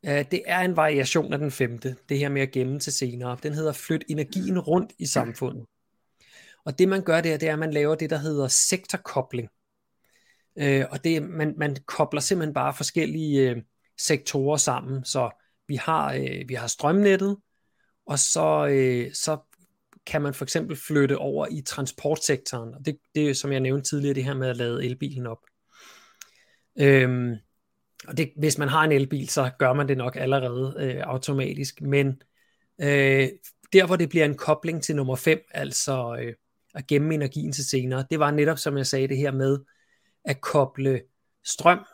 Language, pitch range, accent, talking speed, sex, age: Danish, 130-155 Hz, native, 175 wpm, male, 30-49